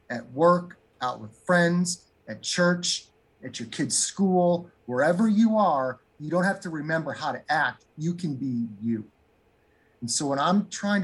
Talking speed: 170 wpm